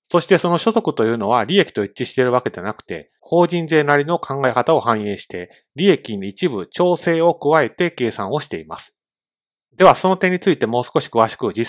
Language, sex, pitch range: Japanese, male, 120-175 Hz